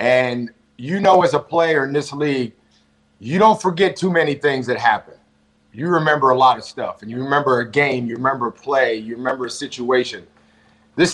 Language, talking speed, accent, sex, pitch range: English, 200 wpm, American, male, 115-165 Hz